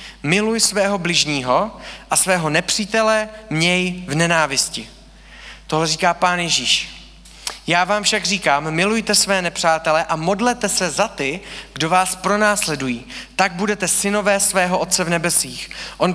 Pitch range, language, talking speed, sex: 155-195 Hz, Czech, 135 wpm, male